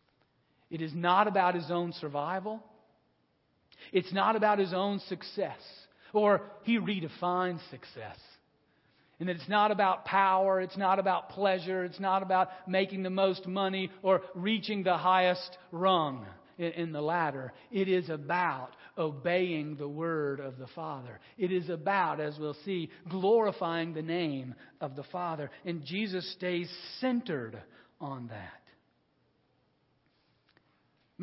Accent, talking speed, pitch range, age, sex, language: American, 135 wpm, 170-220 Hz, 50-69, male, English